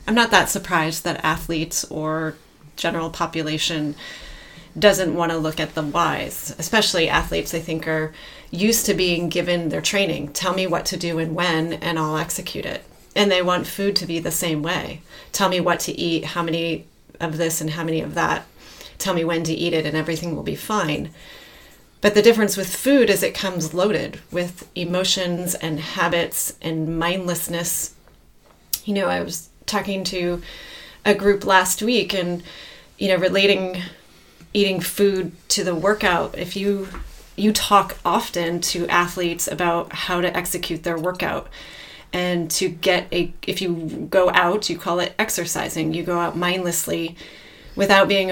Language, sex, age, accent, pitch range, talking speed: English, female, 30-49, American, 165-185 Hz, 170 wpm